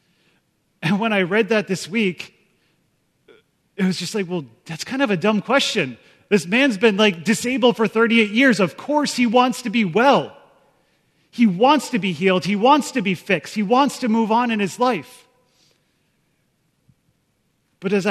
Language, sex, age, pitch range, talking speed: English, male, 30-49, 170-220 Hz, 175 wpm